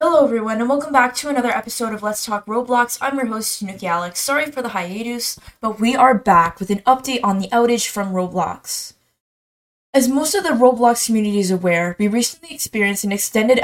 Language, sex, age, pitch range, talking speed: English, female, 20-39, 200-260 Hz, 200 wpm